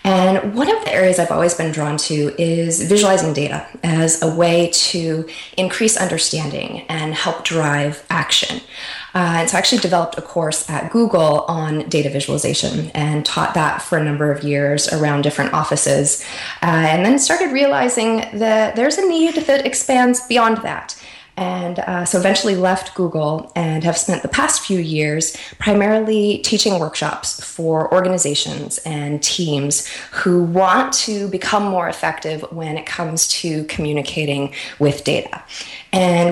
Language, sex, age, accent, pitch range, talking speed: English, female, 20-39, American, 160-200 Hz, 155 wpm